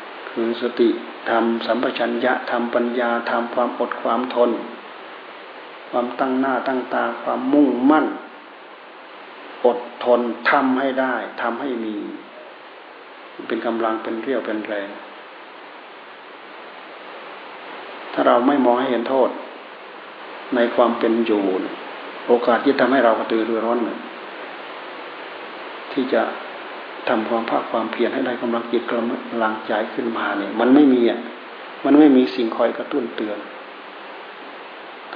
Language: Thai